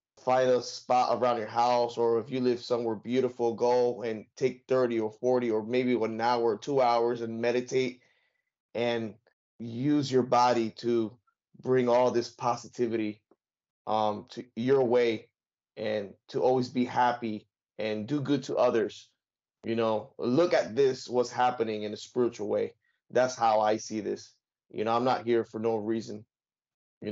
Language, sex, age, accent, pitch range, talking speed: English, male, 20-39, American, 110-125 Hz, 165 wpm